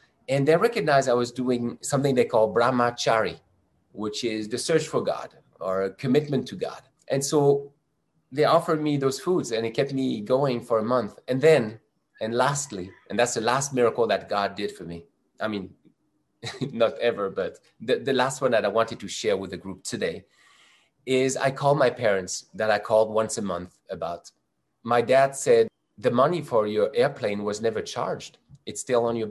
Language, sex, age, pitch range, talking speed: English, male, 30-49, 110-140 Hz, 195 wpm